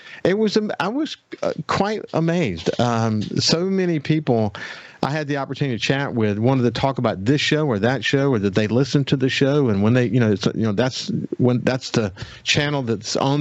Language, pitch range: English, 105-130 Hz